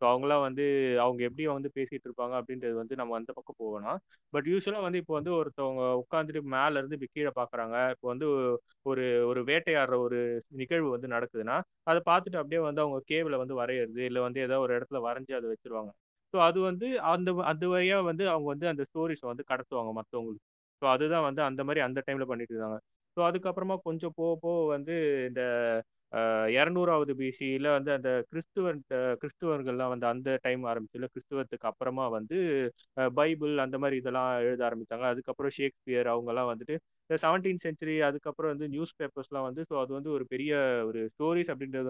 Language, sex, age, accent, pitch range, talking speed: Tamil, male, 30-49, native, 120-155 Hz, 170 wpm